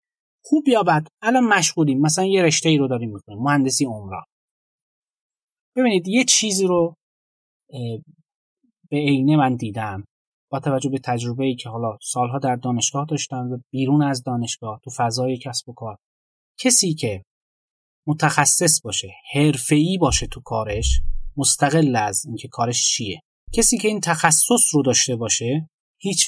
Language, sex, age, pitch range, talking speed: Persian, male, 30-49, 125-175 Hz, 145 wpm